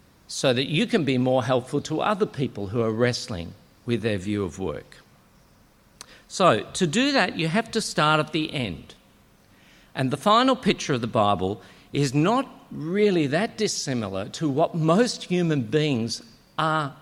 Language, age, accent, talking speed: English, 50-69, Australian, 165 wpm